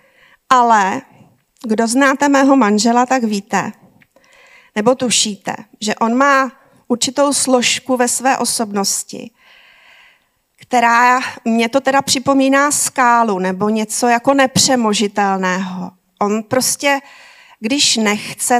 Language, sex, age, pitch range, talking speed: Czech, female, 40-59, 215-260 Hz, 100 wpm